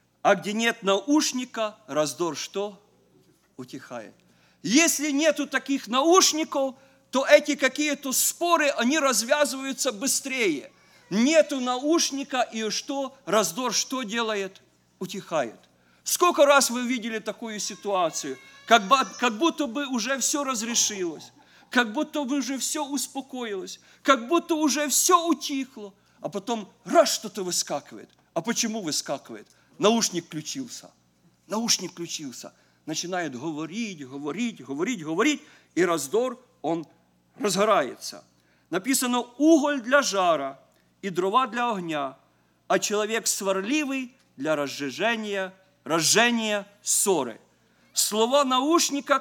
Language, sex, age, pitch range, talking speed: English, male, 50-69, 190-275 Hz, 105 wpm